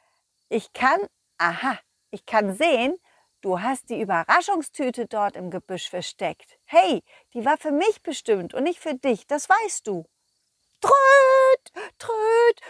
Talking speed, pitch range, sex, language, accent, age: 135 wpm, 185-290 Hz, female, German, German, 60-79